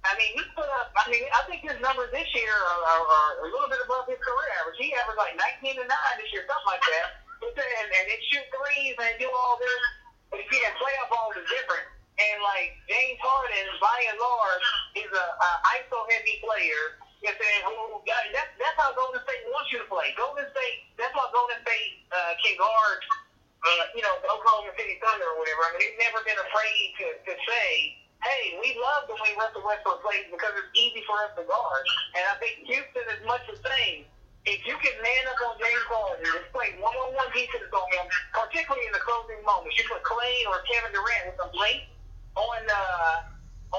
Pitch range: 210-285 Hz